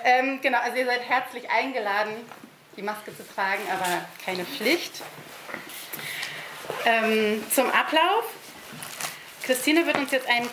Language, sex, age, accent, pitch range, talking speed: German, female, 30-49, German, 215-275 Hz, 125 wpm